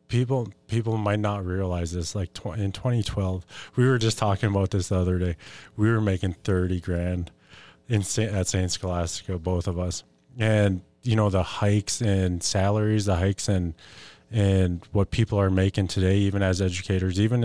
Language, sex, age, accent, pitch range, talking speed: English, male, 20-39, American, 90-105 Hz, 170 wpm